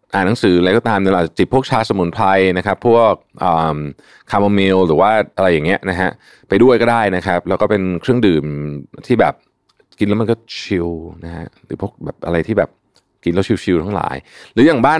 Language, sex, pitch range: Thai, male, 80-105 Hz